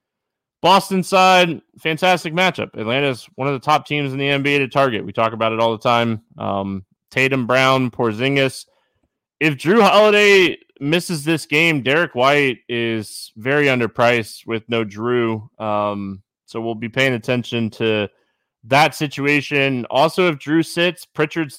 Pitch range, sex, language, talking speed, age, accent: 115-145 Hz, male, English, 155 wpm, 20-39, American